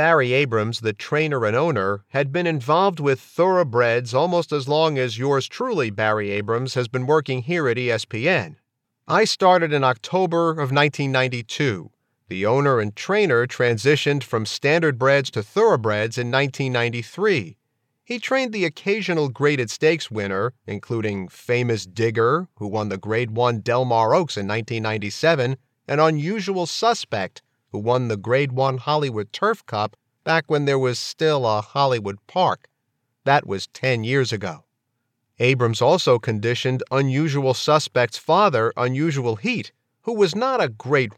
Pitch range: 115-155 Hz